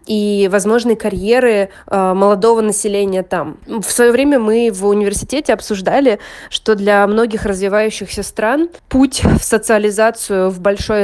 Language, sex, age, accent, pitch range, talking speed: Russian, female, 20-39, native, 195-230 Hz, 125 wpm